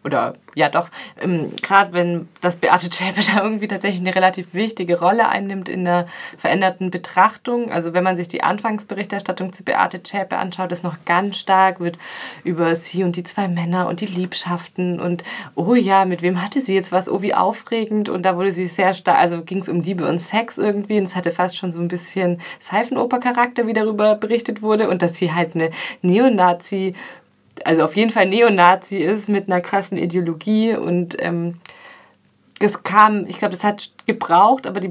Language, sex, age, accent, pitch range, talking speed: German, female, 20-39, German, 175-200 Hz, 190 wpm